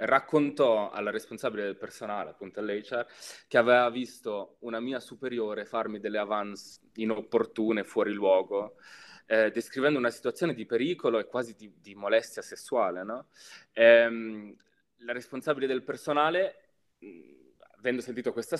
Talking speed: 130 wpm